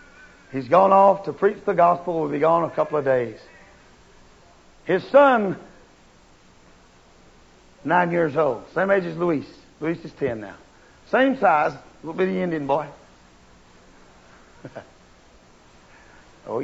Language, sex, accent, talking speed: English, male, American, 125 wpm